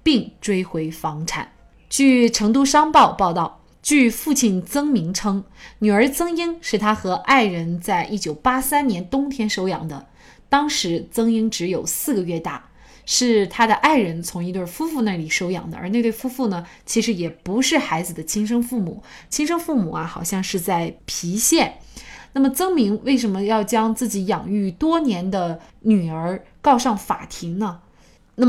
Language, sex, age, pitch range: Chinese, female, 20-39, 185-255 Hz